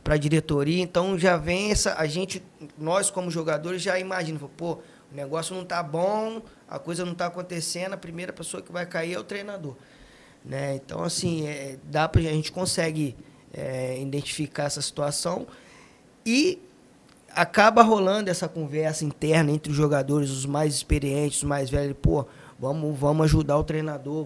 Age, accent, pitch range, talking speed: 20-39, Brazilian, 150-185 Hz, 170 wpm